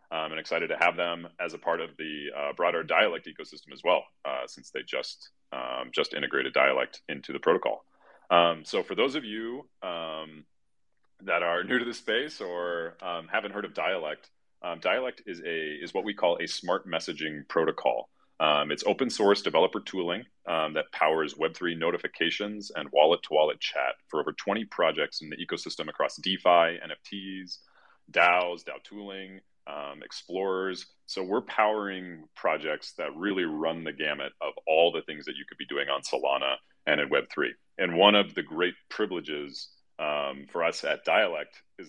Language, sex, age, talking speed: English, male, 30-49, 175 wpm